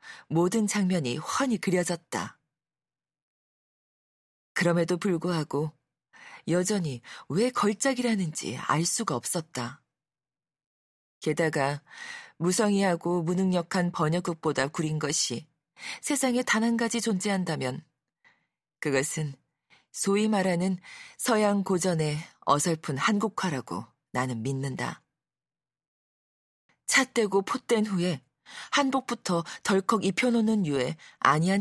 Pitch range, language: 155-210 Hz, Korean